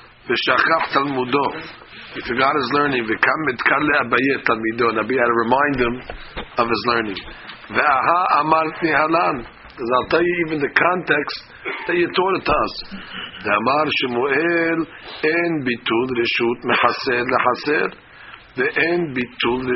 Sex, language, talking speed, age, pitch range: male, English, 75 wpm, 50-69, 120-155 Hz